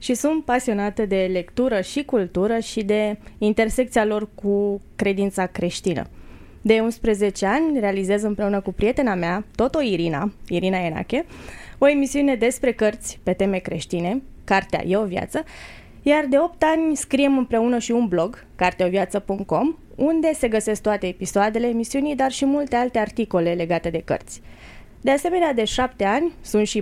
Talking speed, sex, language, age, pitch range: 150 wpm, female, Romanian, 20-39, 190-245 Hz